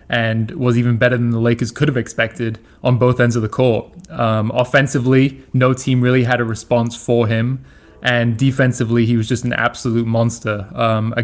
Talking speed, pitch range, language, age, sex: 190 wpm, 115-130 Hz, English, 20-39, male